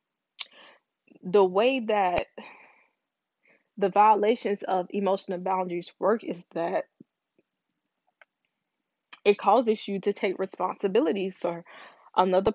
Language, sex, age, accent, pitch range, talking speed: English, female, 20-39, American, 185-230 Hz, 90 wpm